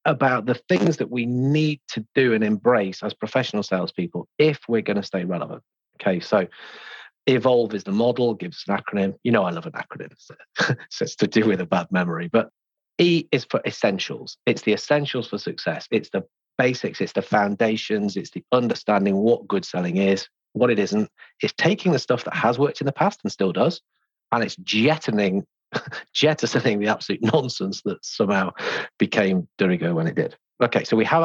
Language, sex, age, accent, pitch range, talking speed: English, male, 40-59, British, 100-145 Hz, 190 wpm